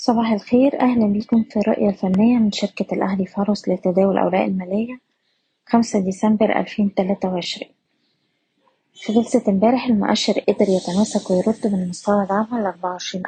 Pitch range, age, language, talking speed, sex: 190-225 Hz, 20-39, Arabic, 135 wpm, female